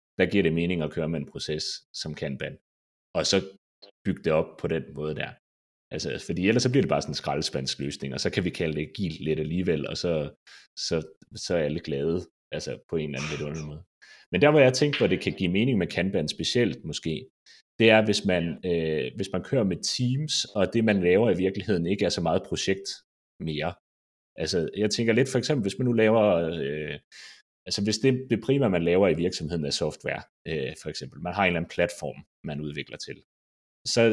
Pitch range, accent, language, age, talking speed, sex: 75-110 Hz, native, Danish, 30-49, 220 wpm, male